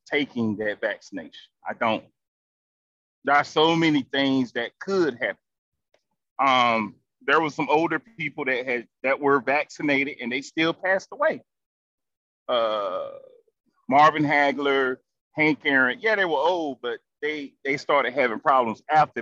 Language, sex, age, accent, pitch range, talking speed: English, male, 30-49, American, 130-170 Hz, 140 wpm